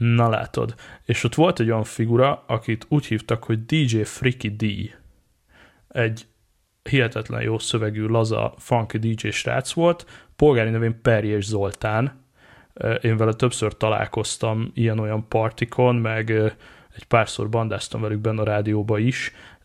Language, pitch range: Hungarian, 110-125 Hz